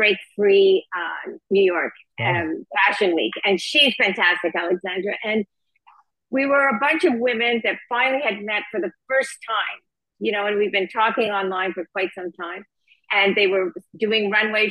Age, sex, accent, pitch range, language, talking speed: 50-69, female, American, 195-240 Hz, English, 175 wpm